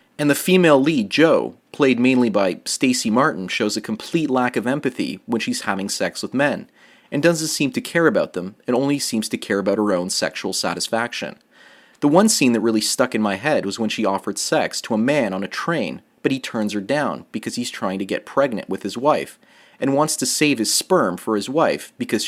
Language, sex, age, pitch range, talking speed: English, male, 30-49, 105-150 Hz, 225 wpm